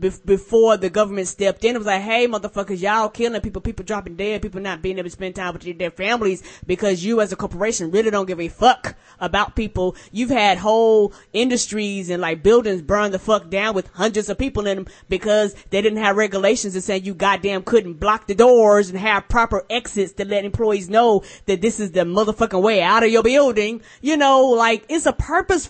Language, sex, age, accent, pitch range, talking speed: English, female, 20-39, American, 195-235 Hz, 215 wpm